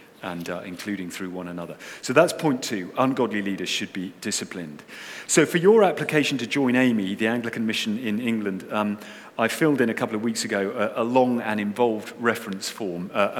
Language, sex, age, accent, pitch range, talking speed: English, male, 40-59, British, 100-145 Hz, 195 wpm